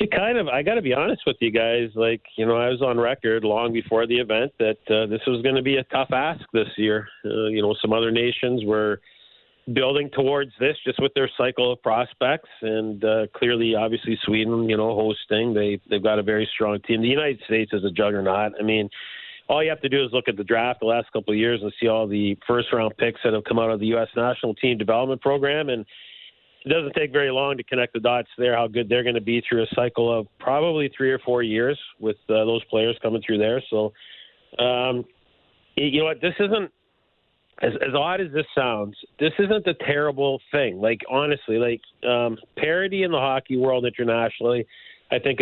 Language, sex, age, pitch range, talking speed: English, male, 40-59, 110-130 Hz, 220 wpm